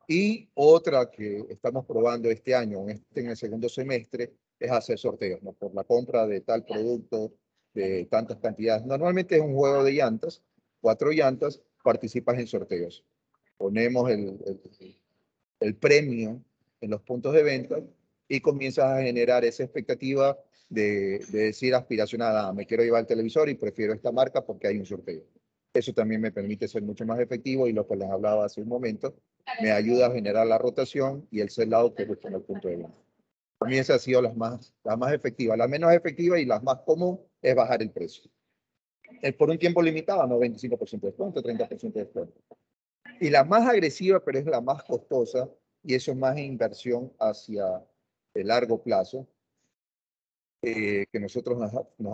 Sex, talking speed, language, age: male, 180 wpm, Spanish, 40-59